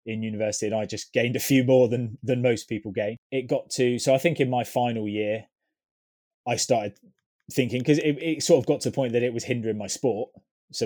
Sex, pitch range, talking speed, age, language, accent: male, 105-125 Hz, 240 wpm, 20-39, English, British